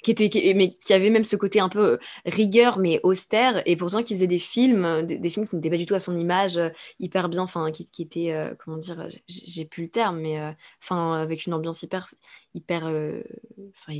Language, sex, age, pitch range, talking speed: French, female, 20-39, 170-195 Hz, 230 wpm